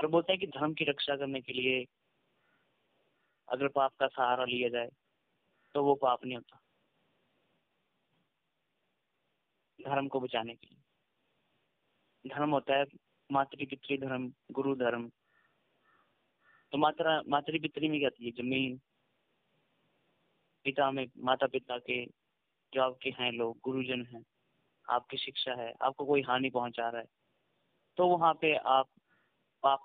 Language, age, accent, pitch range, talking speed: Hindi, 20-39, native, 125-150 Hz, 130 wpm